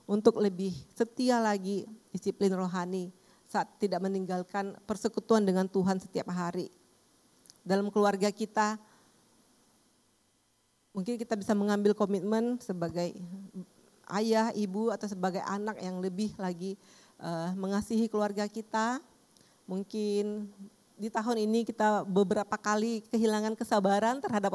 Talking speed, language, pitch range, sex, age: 110 wpm, Indonesian, 190-220 Hz, female, 40-59